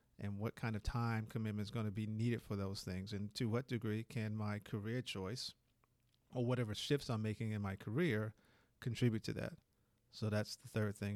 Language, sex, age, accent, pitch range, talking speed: English, male, 40-59, American, 110-130 Hz, 205 wpm